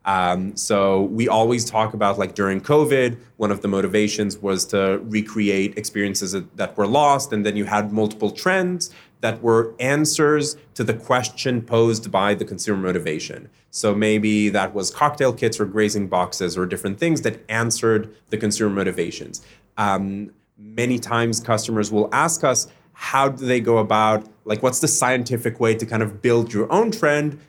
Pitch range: 105-120 Hz